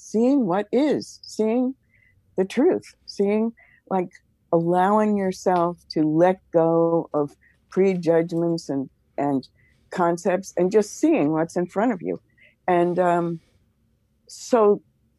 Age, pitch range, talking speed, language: 60-79, 140-205 Hz, 115 wpm, English